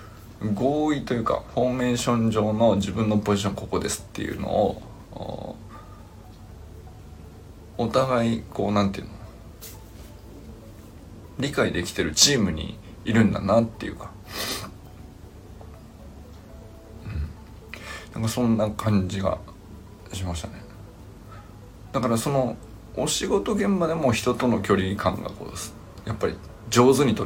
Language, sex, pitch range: Japanese, male, 100-115 Hz